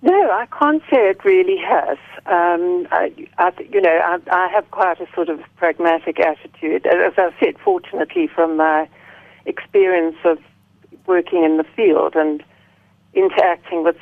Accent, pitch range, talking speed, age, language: British, 165-240 Hz, 160 wpm, 60-79, English